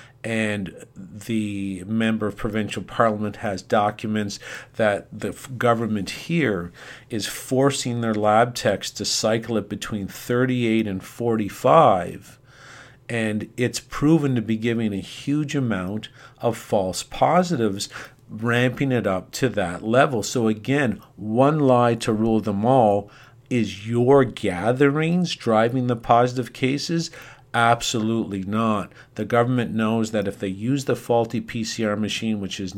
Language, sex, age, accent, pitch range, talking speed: English, male, 50-69, American, 105-125 Hz, 130 wpm